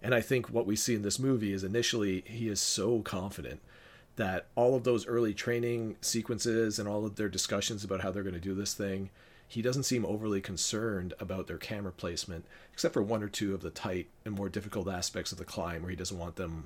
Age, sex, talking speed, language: 40-59, male, 230 wpm, English